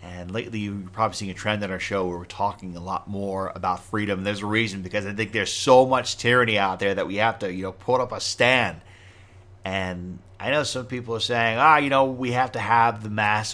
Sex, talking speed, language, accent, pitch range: male, 255 wpm, English, American, 95-110 Hz